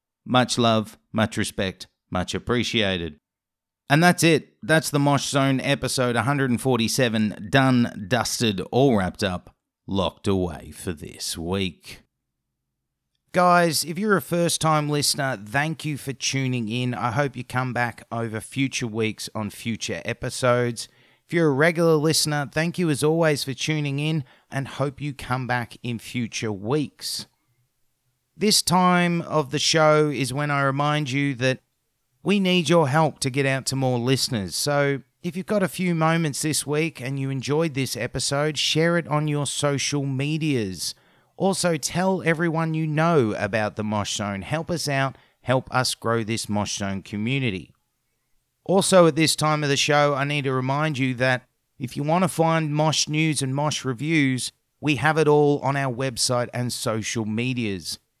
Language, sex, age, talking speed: English, male, 30-49, 165 wpm